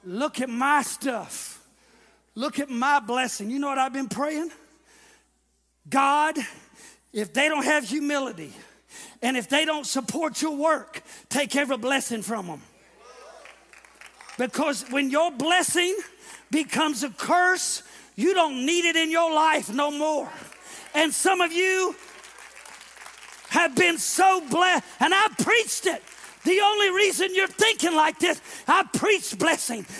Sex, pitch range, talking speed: male, 280-370 Hz, 140 wpm